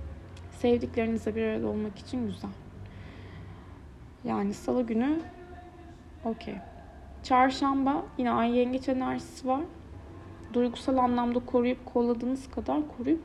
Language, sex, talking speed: Turkish, female, 100 wpm